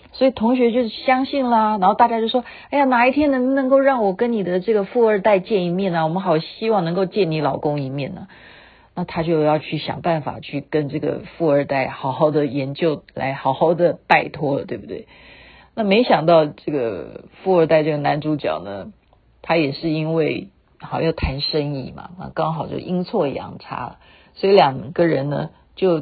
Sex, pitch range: female, 150-210 Hz